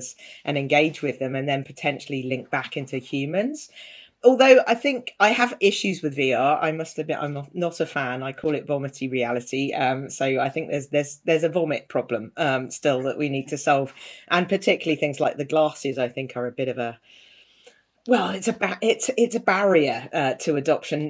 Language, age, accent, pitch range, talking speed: English, 40-59, British, 130-170 Hz, 205 wpm